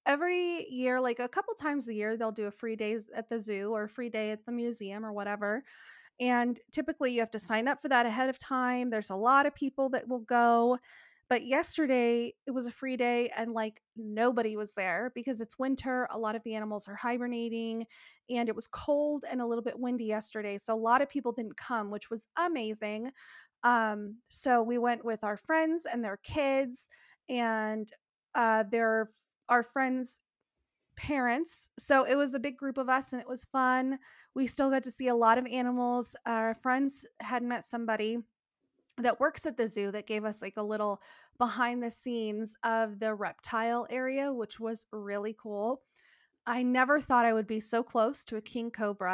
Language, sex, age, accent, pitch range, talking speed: English, female, 30-49, American, 225-265 Hz, 200 wpm